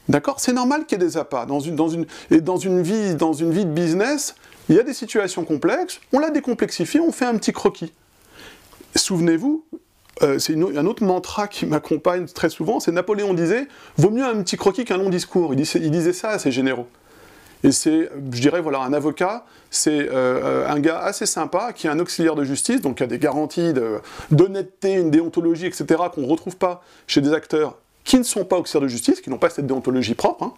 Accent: French